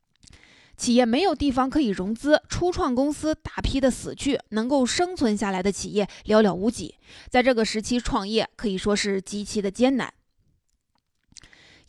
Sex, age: female, 20-39